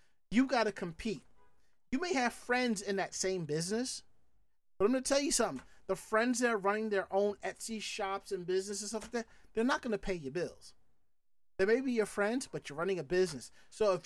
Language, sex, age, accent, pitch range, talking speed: English, male, 30-49, American, 185-230 Hz, 215 wpm